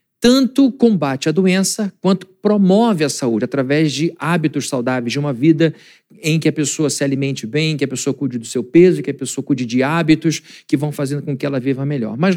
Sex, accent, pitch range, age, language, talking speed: male, Brazilian, 145-195 Hz, 50-69, Portuguese, 215 wpm